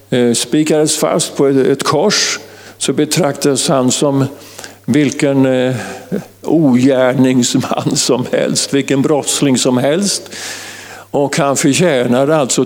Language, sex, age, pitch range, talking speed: Swedish, male, 50-69, 115-160 Hz, 100 wpm